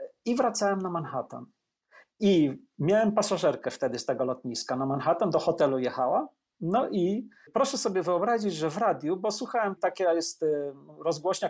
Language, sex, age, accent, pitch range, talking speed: Polish, male, 40-59, native, 155-215 Hz, 150 wpm